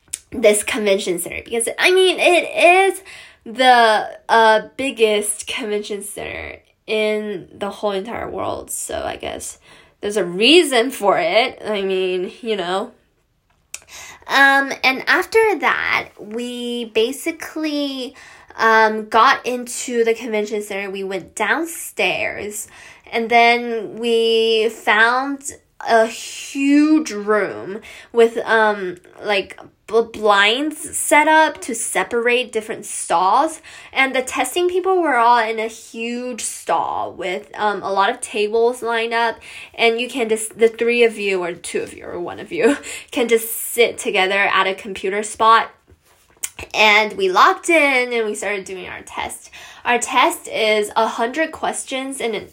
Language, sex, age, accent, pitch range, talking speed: English, female, 10-29, American, 210-265 Hz, 140 wpm